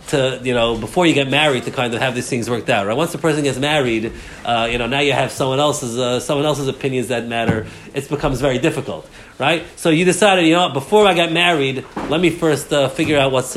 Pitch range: 130-170 Hz